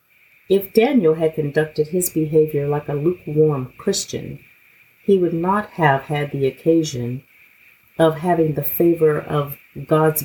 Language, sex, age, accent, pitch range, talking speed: English, female, 50-69, American, 140-170 Hz, 135 wpm